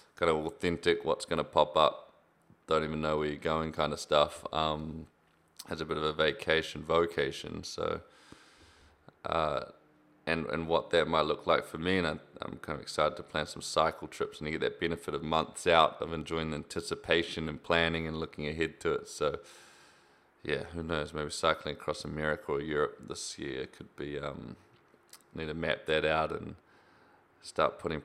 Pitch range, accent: 75-85 Hz, Australian